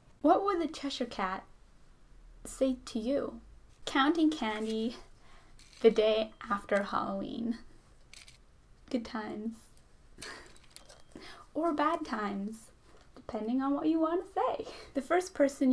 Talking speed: 110 wpm